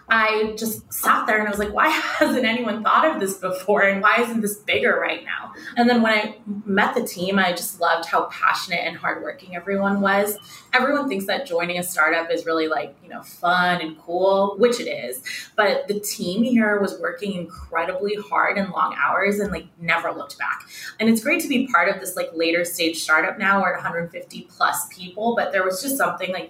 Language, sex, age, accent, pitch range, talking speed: English, female, 20-39, American, 175-220 Hz, 215 wpm